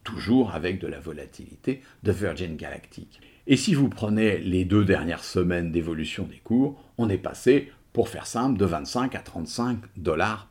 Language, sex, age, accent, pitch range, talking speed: English, male, 50-69, French, 95-130 Hz, 170 wpm